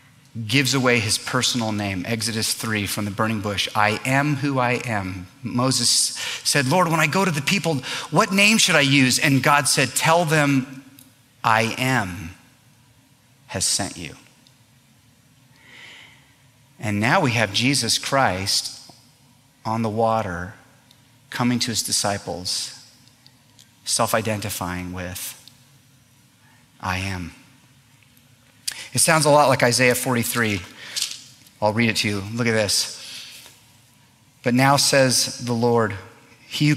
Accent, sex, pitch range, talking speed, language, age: American, male, 110-135 Hz, 130 wpm, English, 30-49